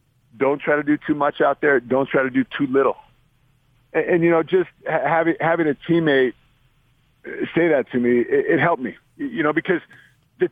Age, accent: 40-59, American